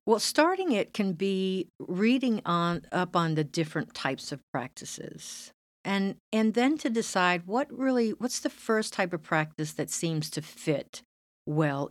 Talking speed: 160 wpm